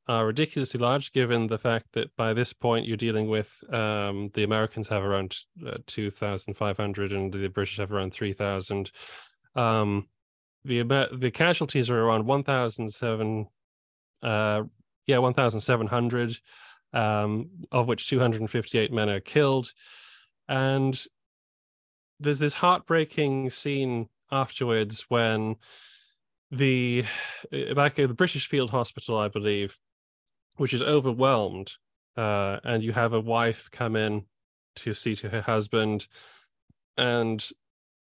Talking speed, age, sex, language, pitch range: 140 wpm, 30-49, male, English, 105-125 Hz